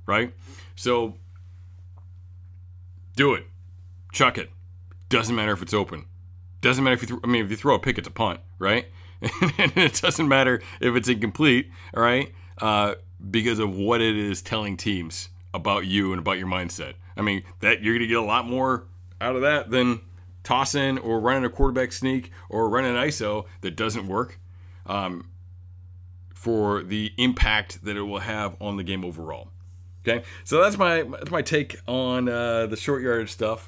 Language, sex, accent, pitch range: English, male, American, 90-115 Hz